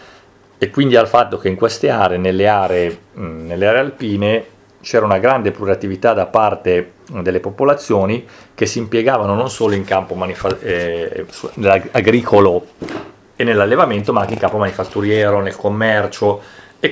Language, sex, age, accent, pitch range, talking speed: Italian, male, 40-59, native, 95-115 Hz, 150 wpm